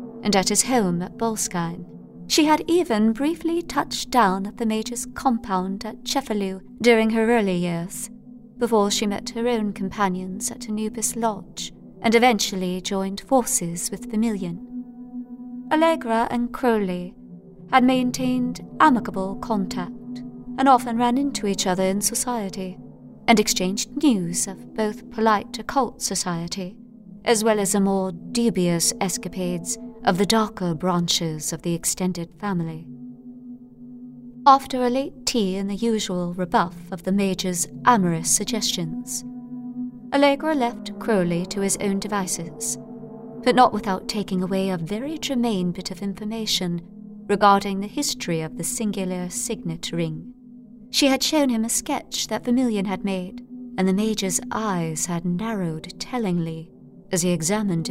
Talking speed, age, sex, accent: 140 wpm, 30-49, female, British